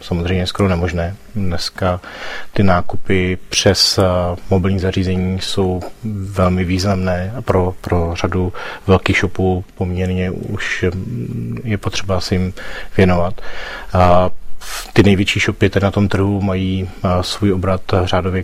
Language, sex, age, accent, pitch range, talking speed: Czech, male, 30-49, native, 90-100 Hz, 115 wpm